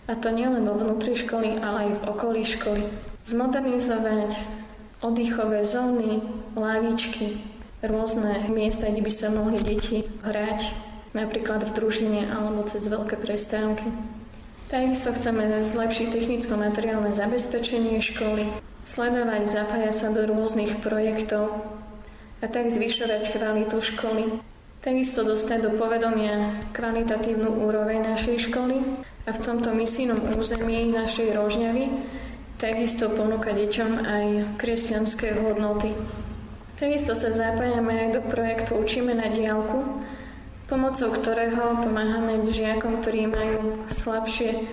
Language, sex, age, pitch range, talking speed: Slovak, female, 20-39, 215-230 Hz, 115 wpm